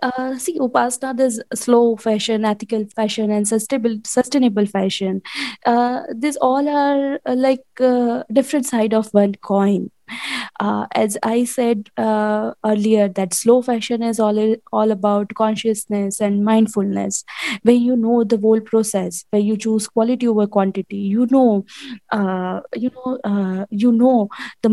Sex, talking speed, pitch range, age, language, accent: female, 145 wpm, 200-245 Hz, 20-39, English, Indian